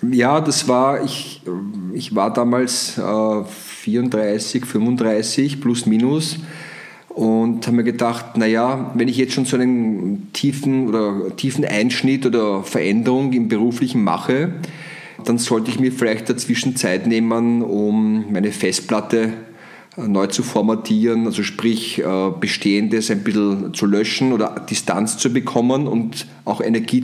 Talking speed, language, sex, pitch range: 135 wpm, German, male, 105-130 Hz